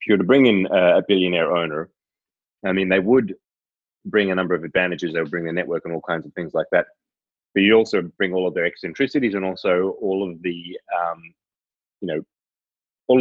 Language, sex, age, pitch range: English, male, 30-49, 85-100 Hz